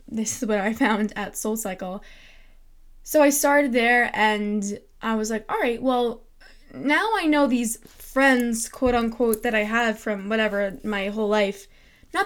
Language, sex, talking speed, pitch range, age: English, female, 165 wpm, 200-240 Hz, 10-29